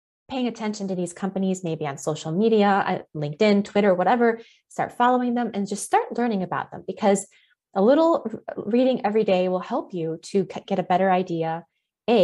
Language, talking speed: English, 175 wpm